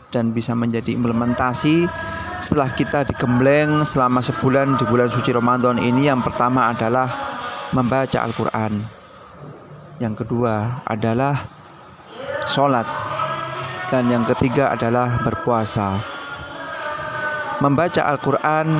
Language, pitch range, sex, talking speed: Indonesian, 125-150 Hz, male, 95 wpm